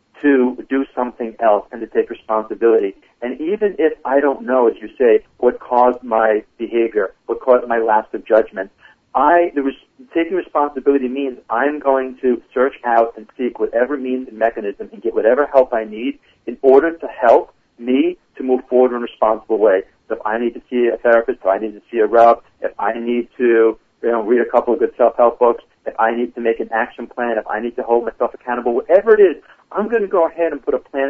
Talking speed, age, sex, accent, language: 230 wpm, 40-59, male, American, English